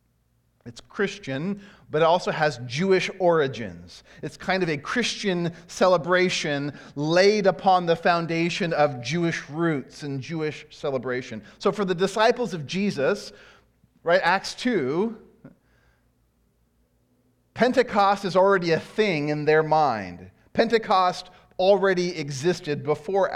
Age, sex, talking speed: 30-49, male, 115 wpm